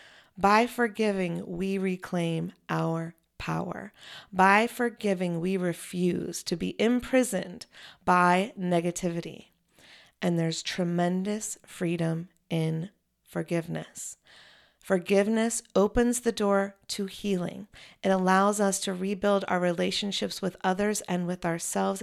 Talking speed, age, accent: 105 wpm, 40-59, American